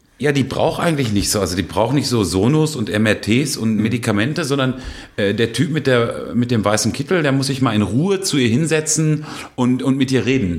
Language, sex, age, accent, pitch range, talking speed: German, male, 40-59, German, 100-130 Hz, 225 wpm